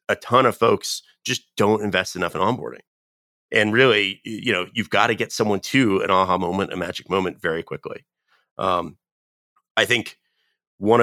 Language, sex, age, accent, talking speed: English, male, 30-49, American, 175 wpm